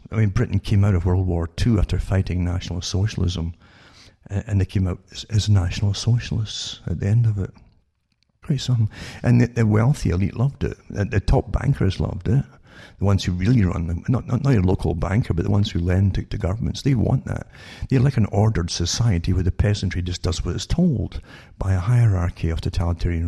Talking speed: 205 wpm